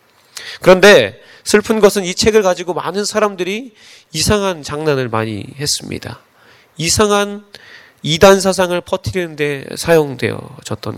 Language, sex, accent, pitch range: Korean, male, native, 140-200 Hz